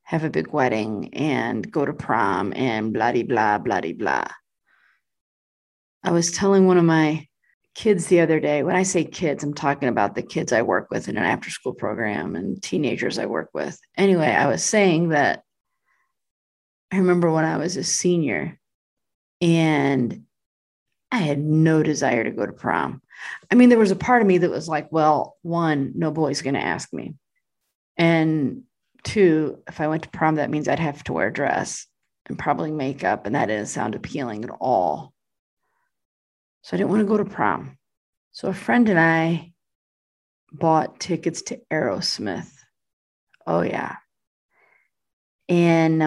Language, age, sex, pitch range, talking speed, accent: English, 30-49, female, 145-185 Hz, 170 wpm, American